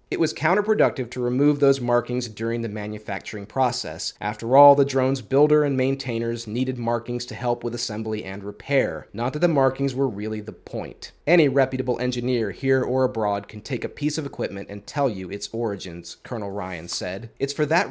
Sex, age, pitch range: male, 30-49, 110-135 Hz